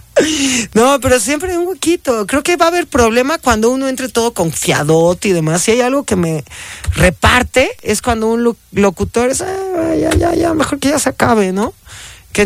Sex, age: male, 30-49